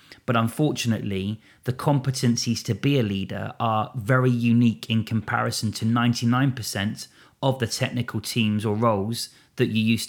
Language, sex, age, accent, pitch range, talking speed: English, male, 30-49, British, 110-125 Hz, 145 wpm